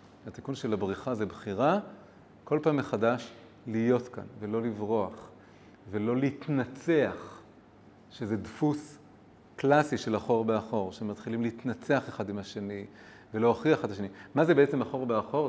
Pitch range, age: 110-140 Hz, 40-59